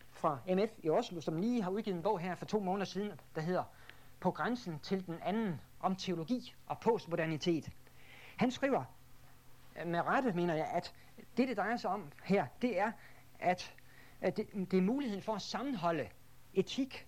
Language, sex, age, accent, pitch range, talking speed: Danish, male, 60-79, native, 165-225 Hz, 170 wpm